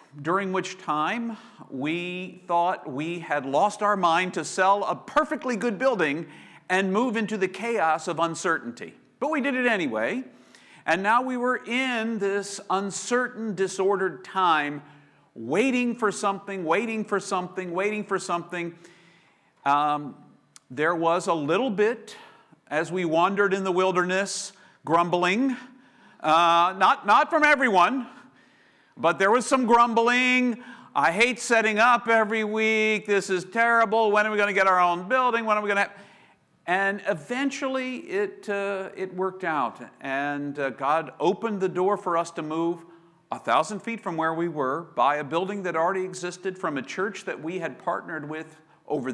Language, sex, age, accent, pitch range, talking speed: English, male, 50-69, American, 160-225 Hz, 160 wpm